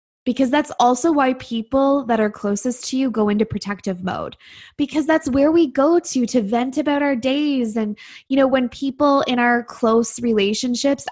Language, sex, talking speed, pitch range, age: English, female, 185 wpm, 210-270 Hz, 20-39